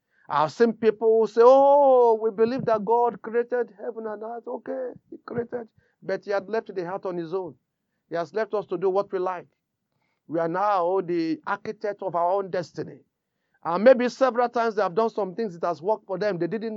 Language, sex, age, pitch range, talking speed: English, male, 40-59, 160-220 Hz, 215 wpm